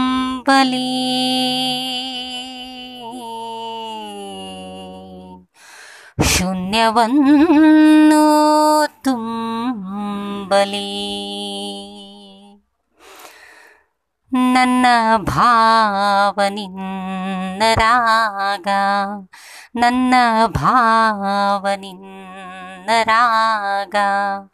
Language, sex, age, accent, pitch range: English, female, 20-39, Indian, 200-290 Hz